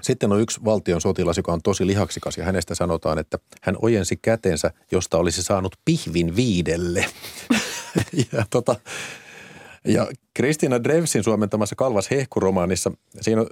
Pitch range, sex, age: 85-110 Hz, male, 30-49